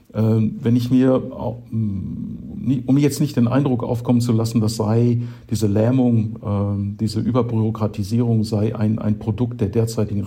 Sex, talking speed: male, 135 wpm